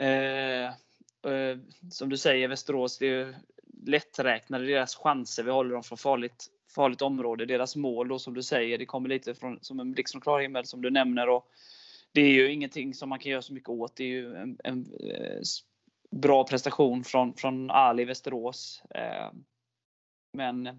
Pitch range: 120-135 Hz